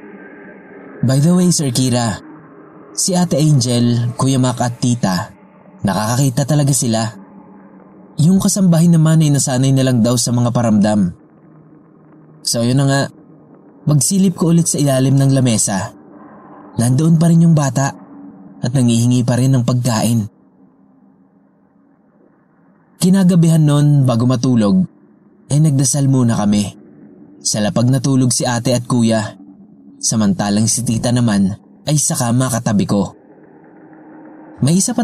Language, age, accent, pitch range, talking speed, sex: English, 20-39, Filipino, 115-145 Hz, 130 wpm, male